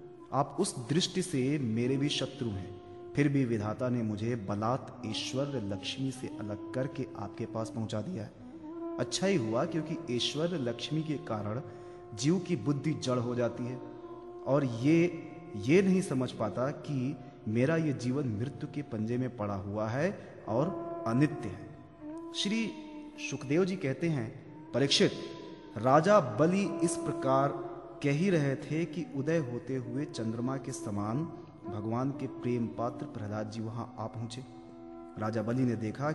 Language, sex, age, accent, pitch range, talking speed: Hindi, male, 30-49, native, 115-155 Hz, 155 wpm